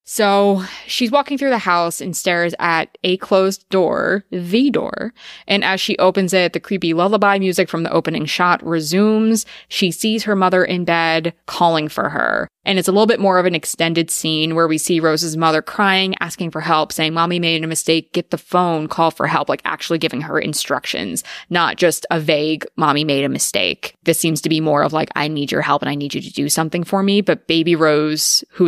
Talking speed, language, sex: 220 wpm, English, female